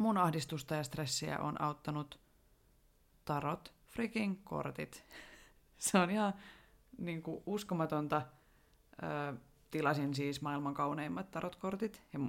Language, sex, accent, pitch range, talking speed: Finnish, female, native, 135-175 Hz, 100 wpm